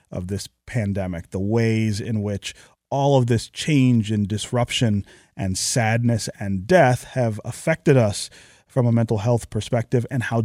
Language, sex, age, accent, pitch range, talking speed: English, male, 30-49, American, 115-155 Hz, 155 wpm